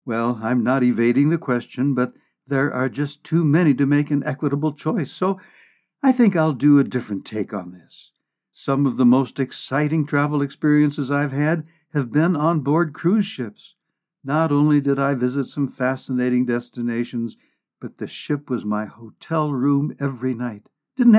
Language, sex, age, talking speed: English, male, 60-79, 170 wpm